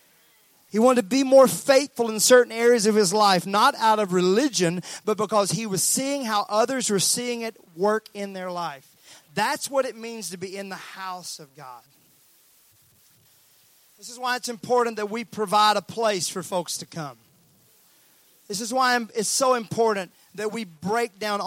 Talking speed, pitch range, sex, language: 180 wpm, 175-225 Hz, male, English